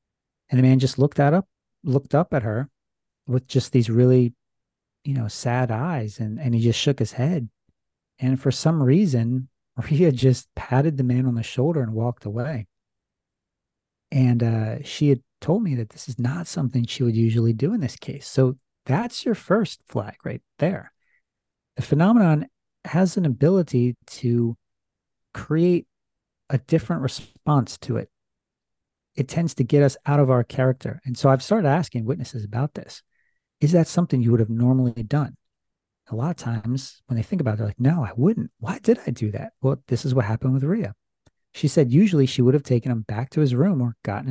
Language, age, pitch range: English, 40-59, 115-145 Hz